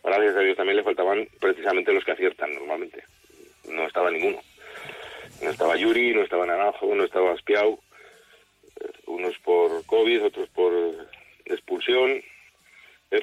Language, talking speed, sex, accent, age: Spanish, 140 wpm, male, Spanish, 40-59